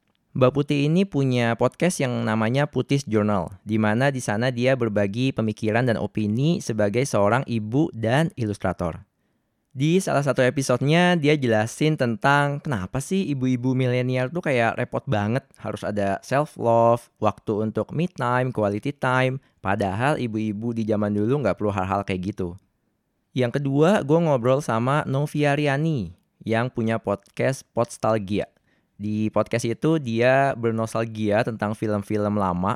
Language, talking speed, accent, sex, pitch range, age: Indonesian, 135 wpm, native, male, 105-135 Hz, 20-39